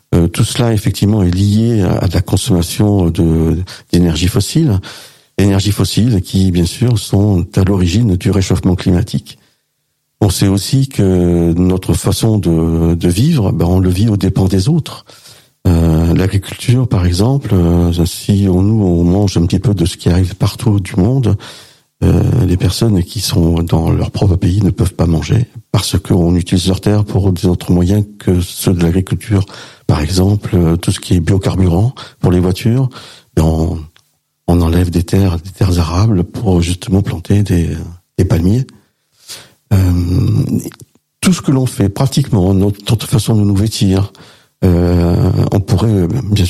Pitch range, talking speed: 90-110 Hz, 160 wpm